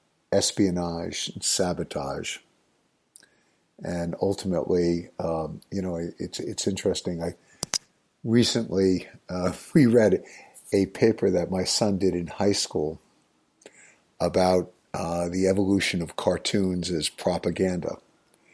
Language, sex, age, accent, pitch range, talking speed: English, male, 50-69, American, 85-100 Hz, 105 wpm